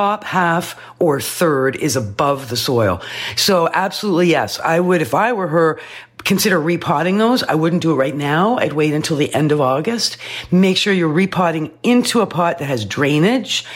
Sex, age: female, 50-69